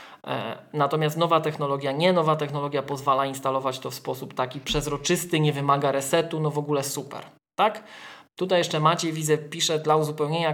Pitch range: 140-165 Hz